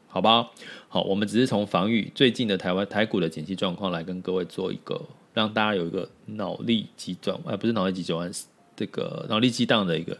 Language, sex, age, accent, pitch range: Chinese, male, 30-49, native, 100-140 Hz